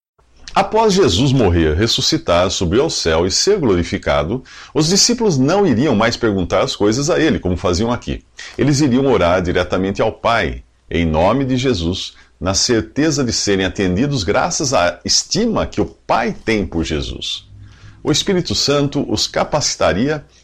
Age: 50-69